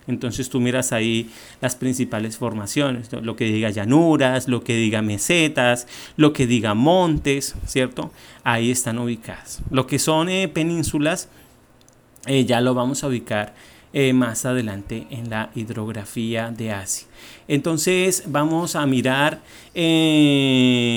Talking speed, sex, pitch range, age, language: 135 wpm, male, 115-135 Hz, 30-49, Spanish